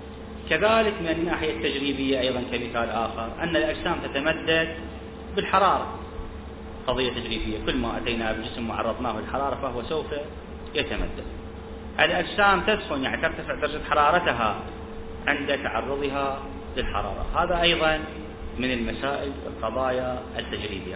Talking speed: 105 wpm